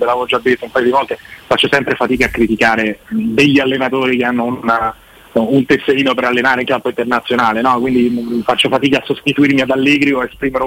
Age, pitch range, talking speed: 30-49, 115-135 Hz, 190 wpm